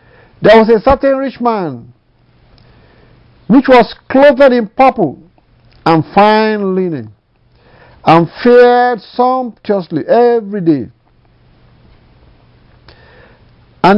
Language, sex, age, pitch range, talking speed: English, male, 50-69, 140-215 Hz, 85 wpm